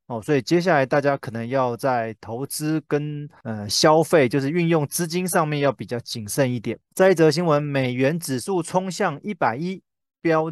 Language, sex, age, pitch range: Chinese, male, 20-39, 130-170 Hz